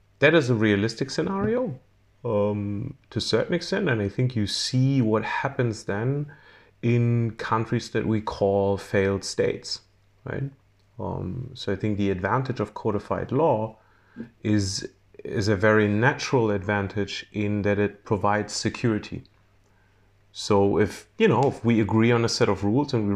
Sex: male